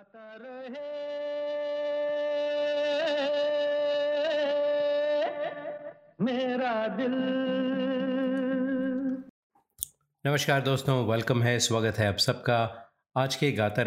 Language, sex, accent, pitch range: Hindi, male, native, 105-145 Hz